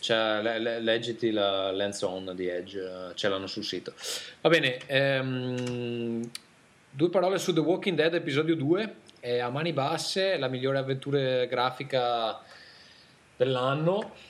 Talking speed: 145 wpm